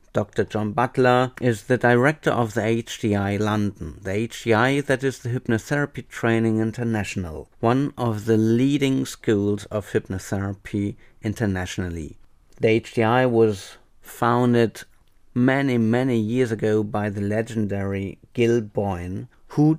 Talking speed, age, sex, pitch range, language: 120 wpm, 50-69, male, 100-120 Hz, English